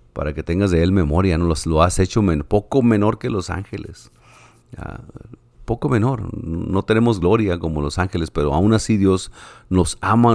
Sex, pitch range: male, 85-115 Hz